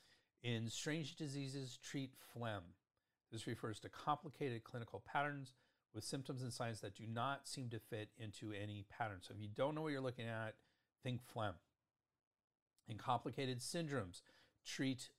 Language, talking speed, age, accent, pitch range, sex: English, 155 wpm, 40-59, American, 105-130 Hz, male